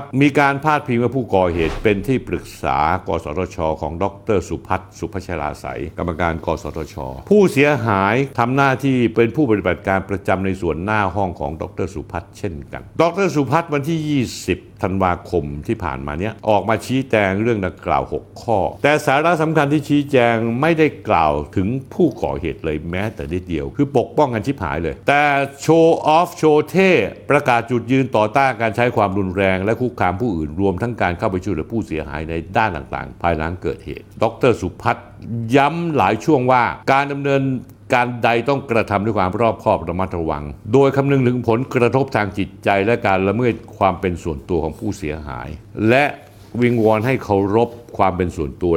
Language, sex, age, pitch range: Thai, male, 60-79, 90-140 Hz